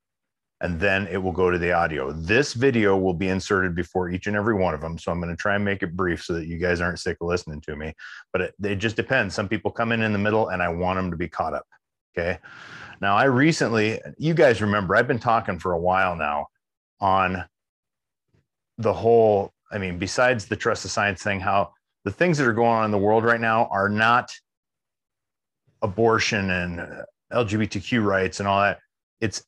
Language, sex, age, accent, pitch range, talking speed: English, male, 30-49, American, 95-120 Hz, 215 wpm